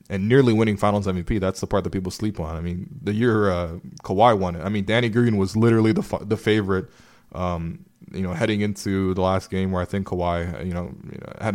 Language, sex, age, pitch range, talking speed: English, male, 20-39, 95-115 Hz, 245 wpm